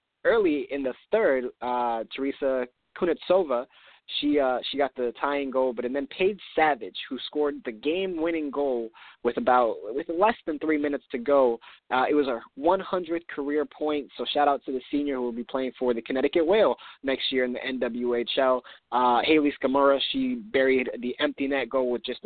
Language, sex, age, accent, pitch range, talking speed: English, male, 20-39, American, 120-140 Hz, 185 wpm